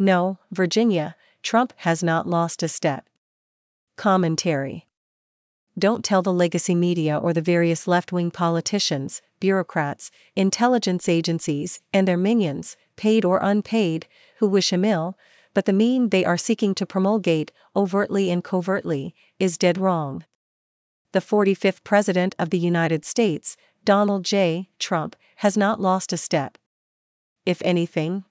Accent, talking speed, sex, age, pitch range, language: American, 135 wpm, female, 40-59, 165-195 Hz, English